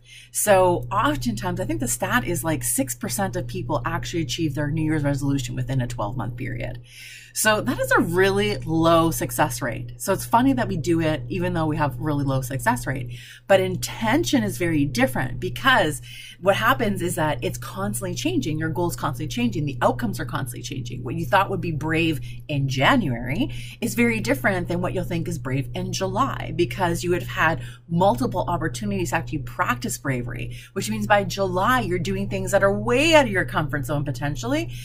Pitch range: 120-170 Hz